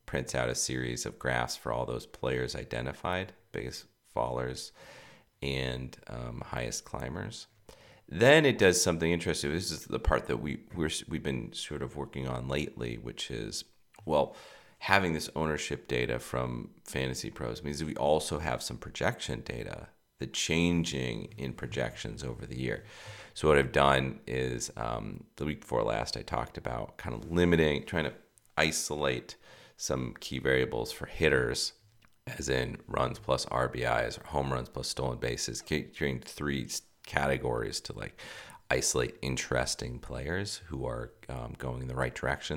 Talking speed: 160 wpm